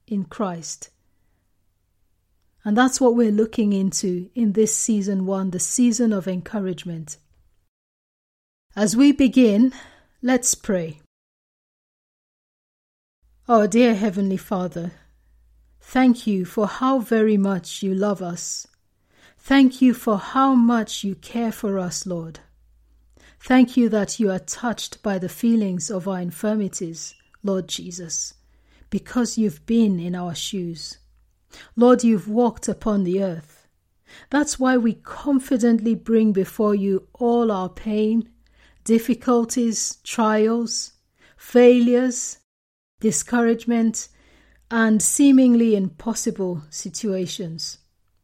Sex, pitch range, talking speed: female, 170-230 Hz, 110 wpm